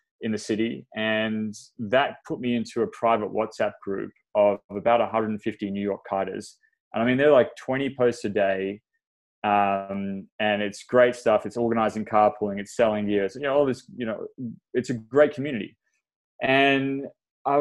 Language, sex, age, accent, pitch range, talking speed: English, male, 20-39, Australian, 105-125 Hz, 170 wpm